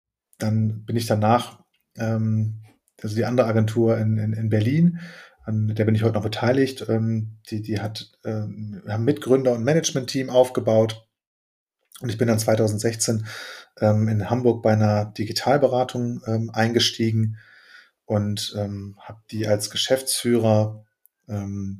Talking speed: 140 wpm